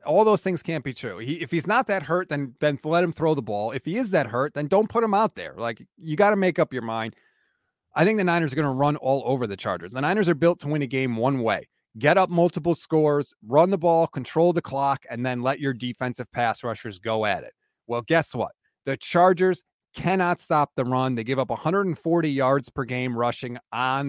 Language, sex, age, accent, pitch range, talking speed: English, male, 30-49, American, 130-180 Hz, 240 wpm